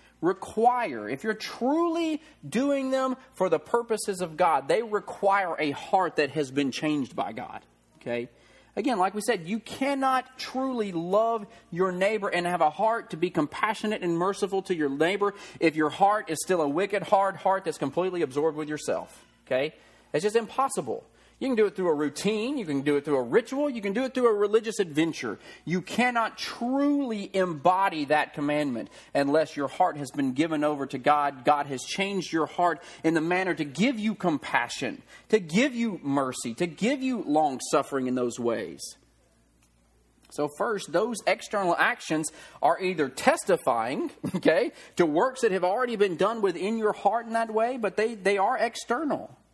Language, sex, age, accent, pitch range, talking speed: English, male, 40-59, American, 155-230 Hz, 180 wpm